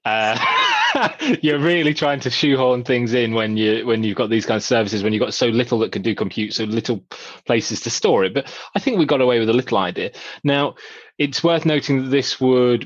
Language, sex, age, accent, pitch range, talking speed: English, male, 20-39, British, 95-125 Hz, 230 wpm